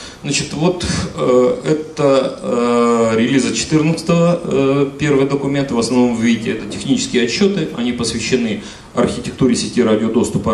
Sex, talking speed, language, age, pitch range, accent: male, 115 wpm, Russian, 40-59, 115-150 Hz, native